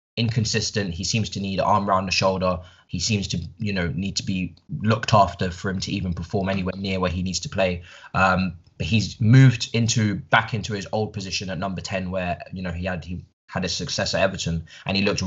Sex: male